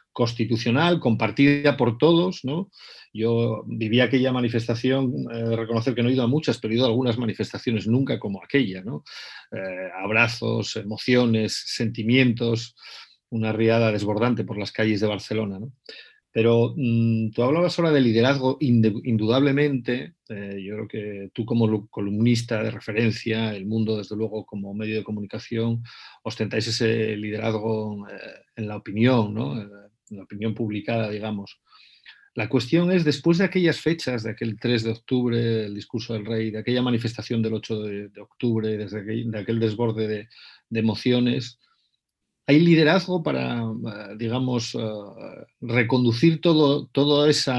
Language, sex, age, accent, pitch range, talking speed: Spanish, male, 40-59, Spanish, 110-125 Hz, 150 wpm